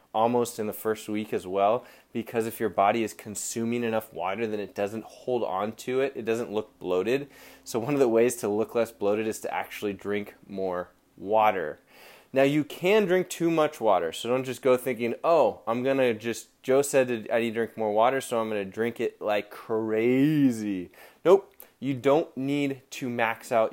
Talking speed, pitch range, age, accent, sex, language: 200 wpm, 105-130 Hz, 20-39, American, male, English